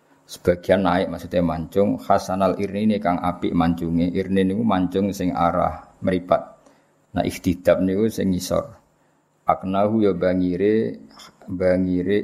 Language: Malay